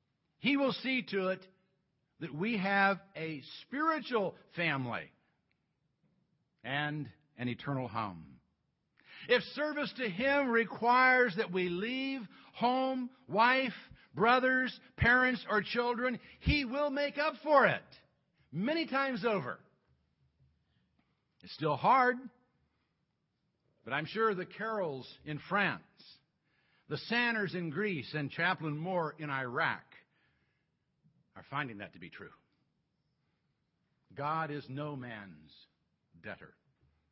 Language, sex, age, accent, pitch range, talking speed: English, male, 60-79, American, 145-235 Hz, 110 wpm